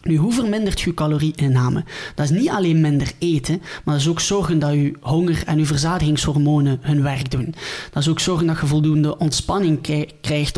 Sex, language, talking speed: male, Dutch, 195 wpm